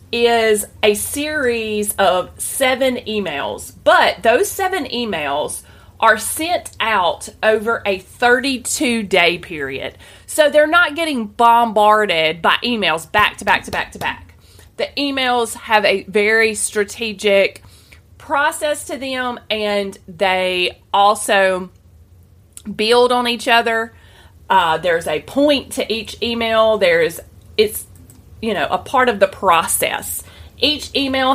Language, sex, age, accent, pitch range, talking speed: English, female, 30-49, American, 190-255 Hz, 125 wpm